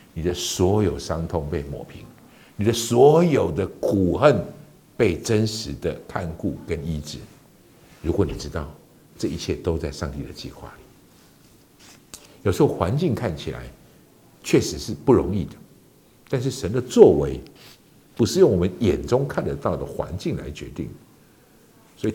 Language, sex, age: Chinese, male, 60-79